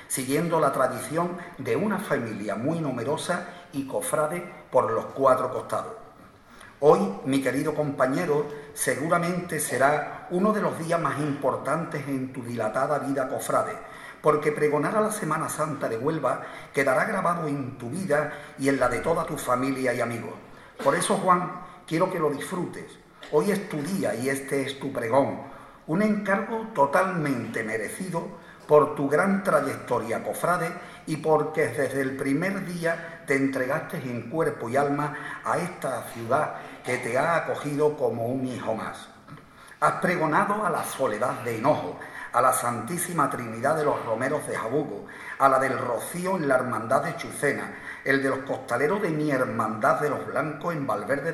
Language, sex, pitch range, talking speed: Spanish, male, 135-175 Hz, 160 wpm